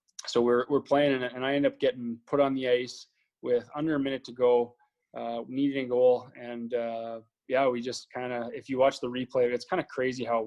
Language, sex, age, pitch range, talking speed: English, male, 20-39, 120-140 Hz, 235 wpm